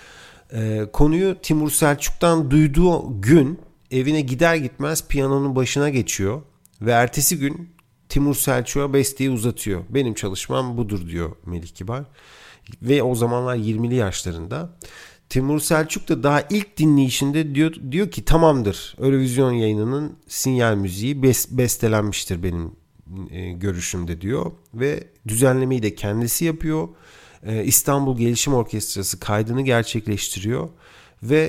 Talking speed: 110 wpm